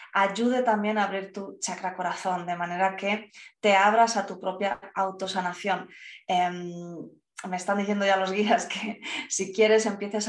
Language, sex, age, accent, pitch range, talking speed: Spanish, female, 20-39, Spanish, 185-220 Hz, 160 wpm